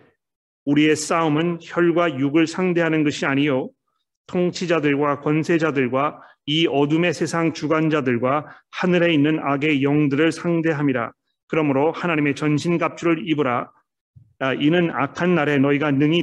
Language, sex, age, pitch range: Korean, male, 40-59, 140-170 Hz